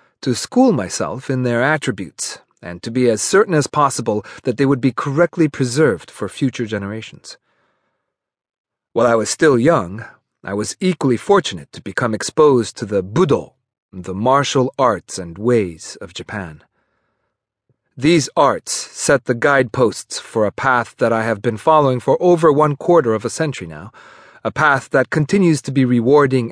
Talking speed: 165 wpm